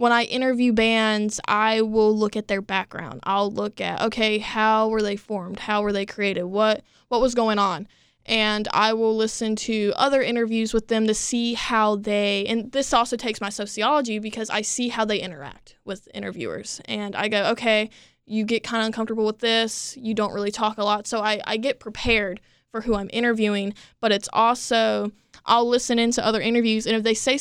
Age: 20-39